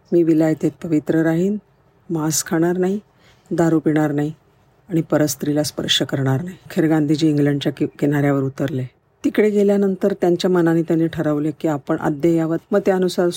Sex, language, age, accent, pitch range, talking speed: female, Marathi, 50-69, native, 145-165 Hz, 135 wpm